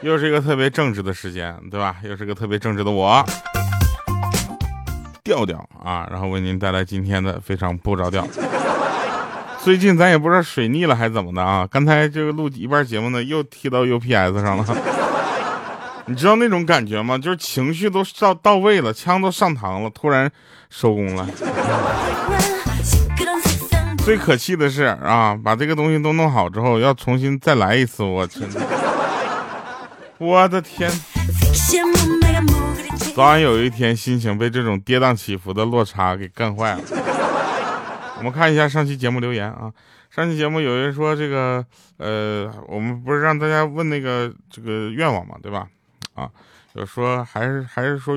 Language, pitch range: Chinese, 100-145 Hz